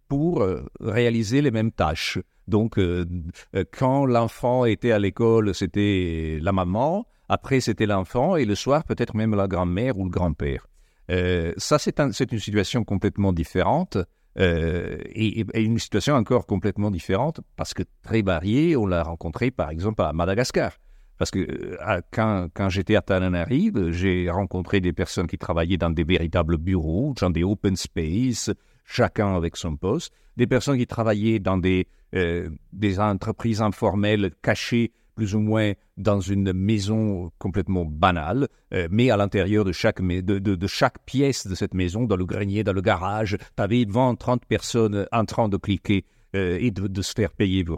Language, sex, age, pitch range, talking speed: French, male, 60-79, 90-115 Hz, 175 wpm